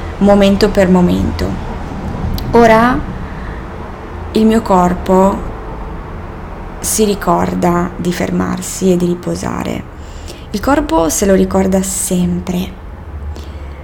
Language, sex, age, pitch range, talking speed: Italian, female, 20-39, 175-195 Hz, 85 wpm